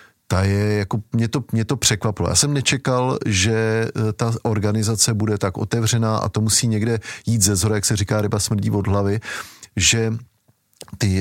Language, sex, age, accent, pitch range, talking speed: Czech, male, 40-59, native, 95-110 Hz, 175 wpm